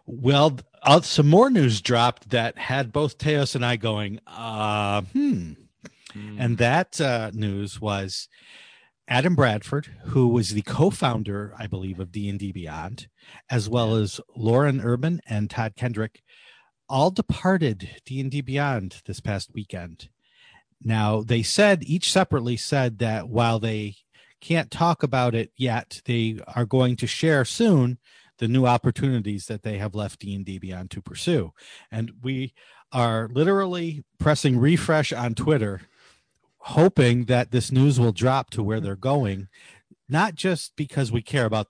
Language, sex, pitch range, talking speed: English, male, 105-135 Hz, 145 wpm